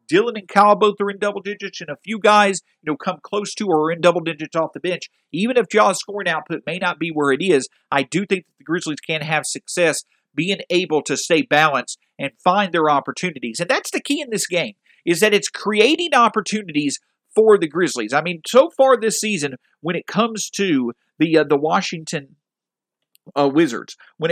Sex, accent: male, American